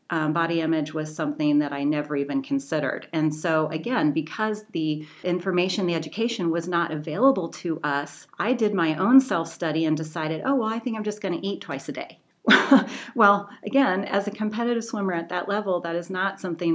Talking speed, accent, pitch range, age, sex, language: 195 wpm, American, 165-200 Hz, 40-59, female, English